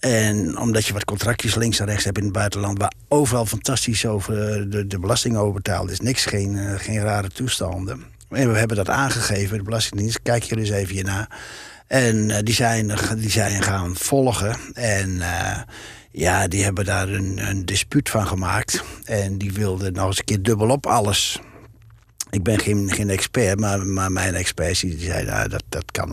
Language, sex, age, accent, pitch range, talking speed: Dutch, male, 60-79, Dutch, 100-120 Hz, 190 wpm